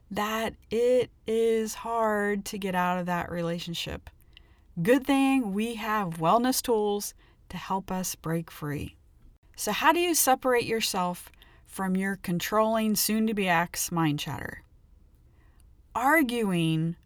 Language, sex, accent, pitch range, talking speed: English, female, American, 165-230 Hz, 130 wpm